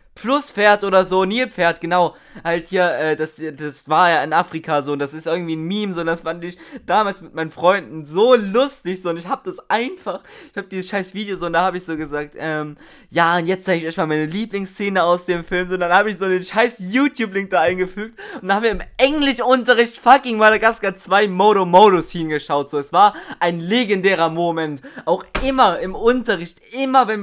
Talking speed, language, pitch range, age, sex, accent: 210 wpm, German, 160-200 Hz, 20-39, male, German